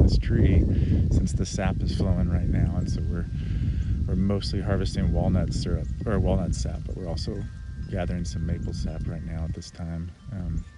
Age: 30-49